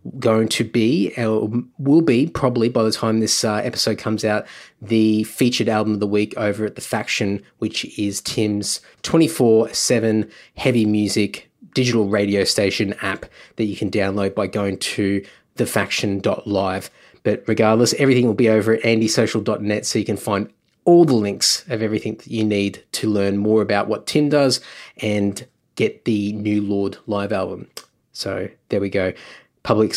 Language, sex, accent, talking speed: English, male, Australian, 170 wpm